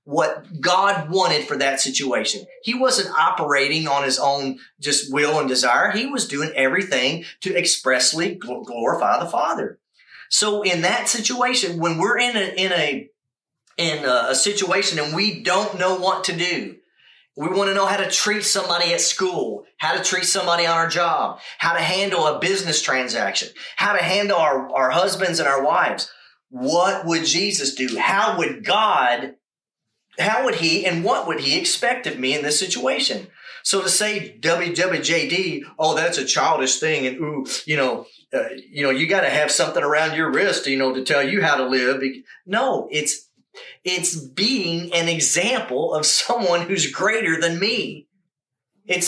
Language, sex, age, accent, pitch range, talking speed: English, male, 30-49, American, 150-205 Hz, 175 wpm